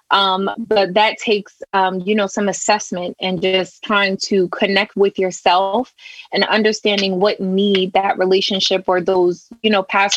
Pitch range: 190-215 Hz